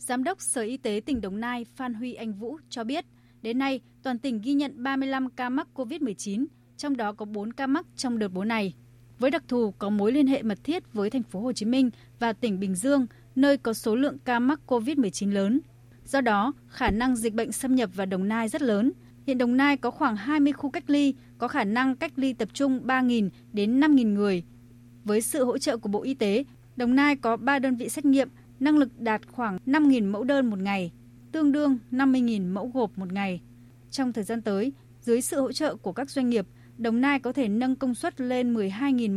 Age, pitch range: 20-39, 205-270 Hz